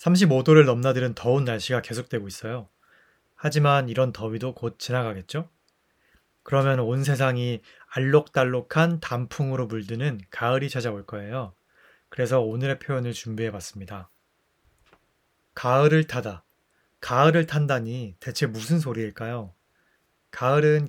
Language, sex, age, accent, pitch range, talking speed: English, male, 20-39, Korean, 115-150 Hz, 90 wpm